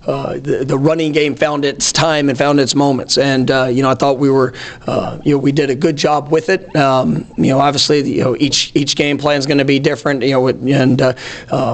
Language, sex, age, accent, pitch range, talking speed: English, male, 40-59, American, 135-145 Hz, 250 wpm